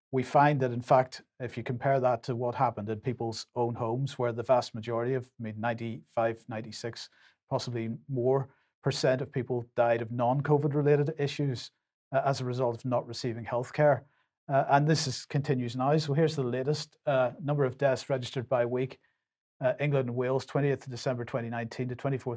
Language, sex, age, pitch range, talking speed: English, male, 40-59, 120-145 Hz, 180 wpm